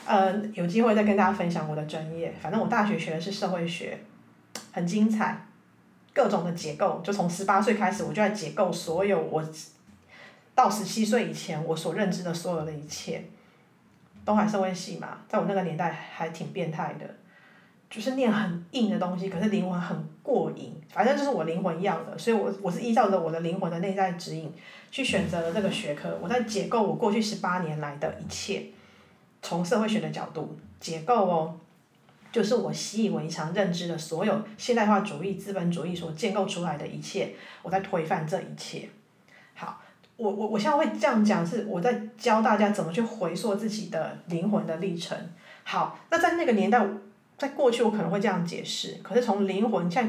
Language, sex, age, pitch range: Chinese, female, 30-49, 175-215 Hz